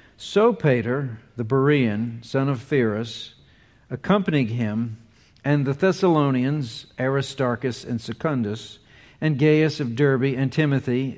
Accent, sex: American, male